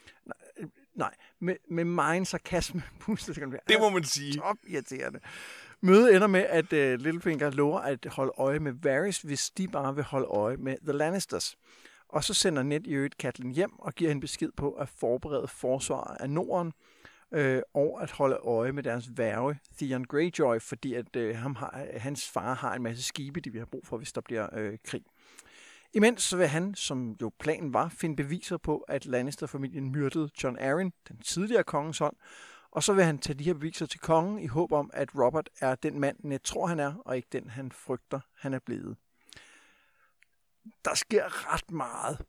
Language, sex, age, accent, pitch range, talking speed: Danish, male, 60-79, native, 130-170 Hz, 195 wpm